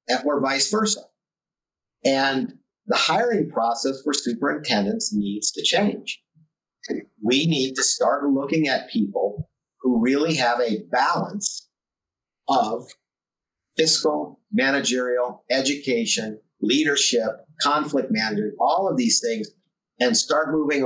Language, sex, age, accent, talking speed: English, male, 50-69, American, 110 wpm